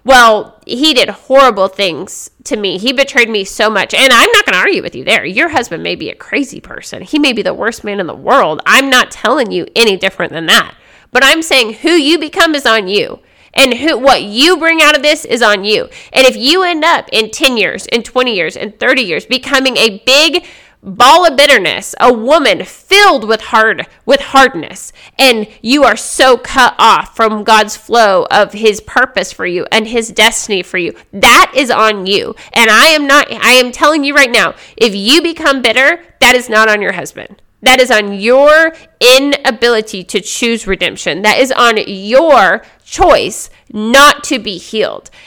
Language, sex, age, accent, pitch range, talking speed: English, female, 30-49, American, 220-280 Hz, 200 wpm